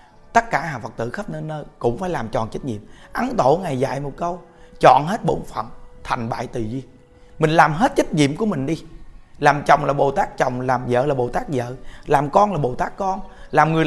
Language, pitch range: Vietnamese, 120-180 Hz